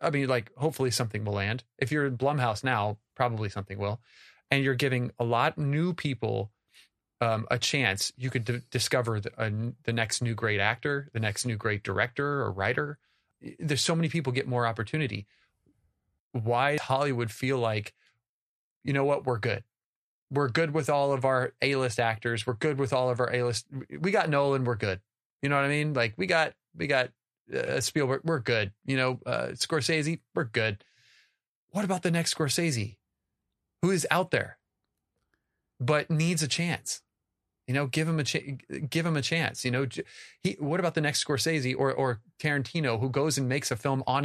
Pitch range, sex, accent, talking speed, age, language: 115-145 Hz, male, American, 190 wpm, 30-49, English